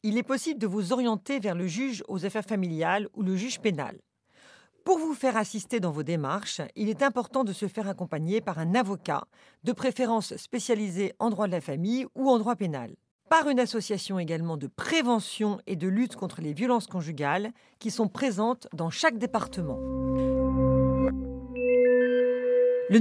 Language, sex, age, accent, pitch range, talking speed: French, female, 40-59, French, 190-250 Hz, 170 wpm